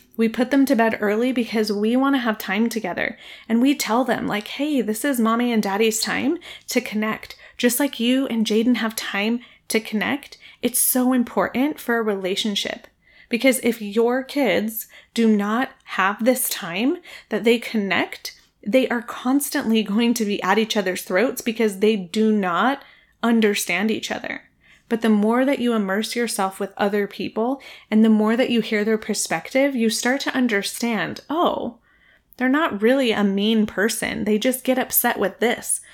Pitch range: 215-250 Hz